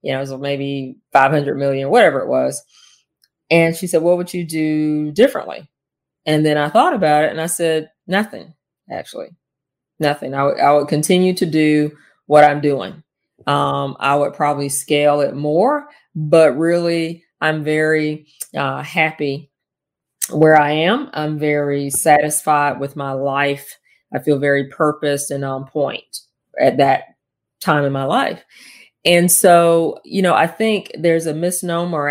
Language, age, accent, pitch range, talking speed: English, 30-49, American, 140-165 Hz, 155 wpm